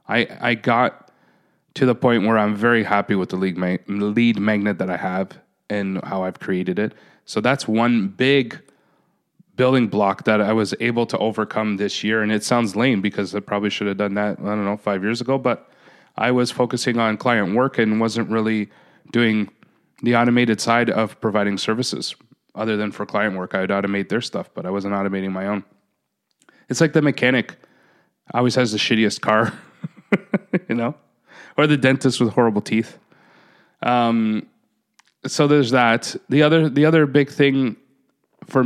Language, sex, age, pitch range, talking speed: English, male, 30-49, 105-125 Hz, 175 wpm